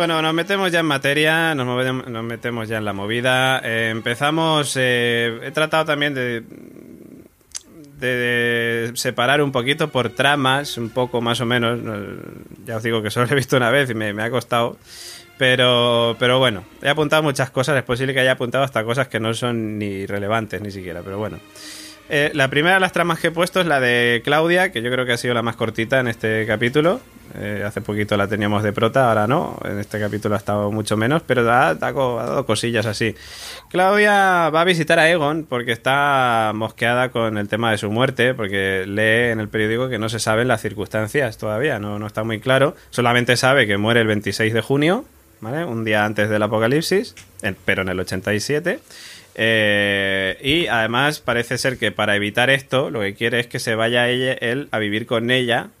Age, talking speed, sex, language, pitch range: 20-39, 200 wpm, male, Spanish, 110-135 Hz